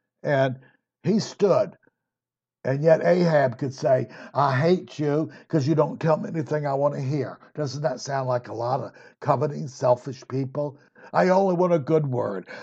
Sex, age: male, 60-79